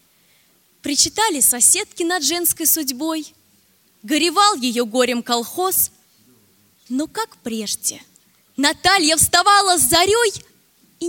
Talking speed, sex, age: 90 wpm, female, 20-39